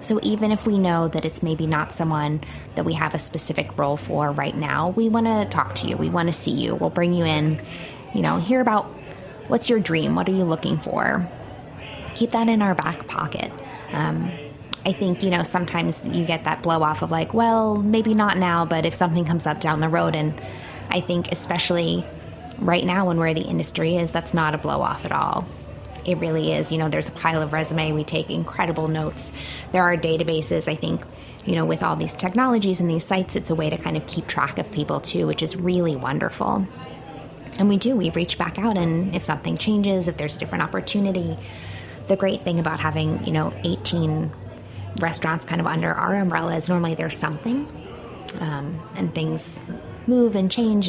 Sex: female